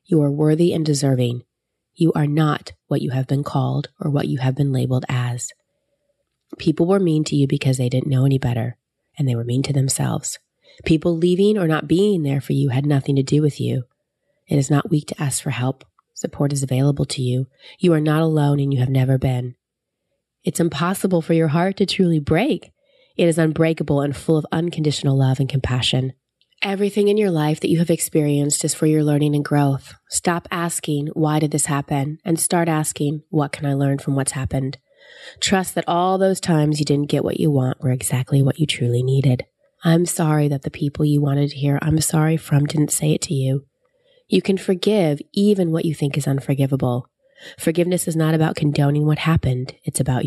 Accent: American